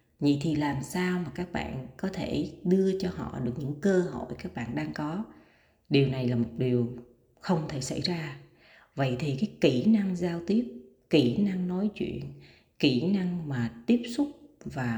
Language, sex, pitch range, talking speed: Vietnamese, female, 130-185 Hz, 185 wpm